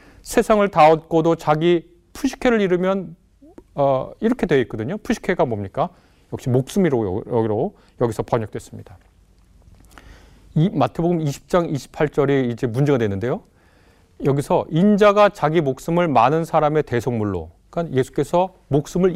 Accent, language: native, Korean